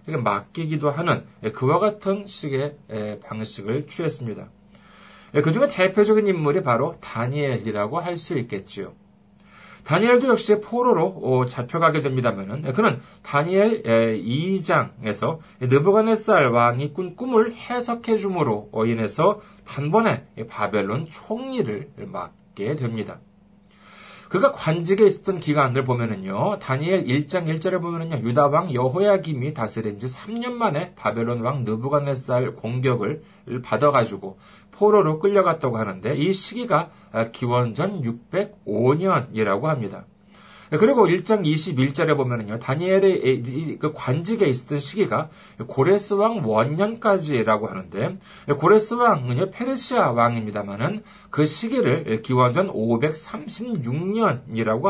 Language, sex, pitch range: Korean, male, 125-200 Hz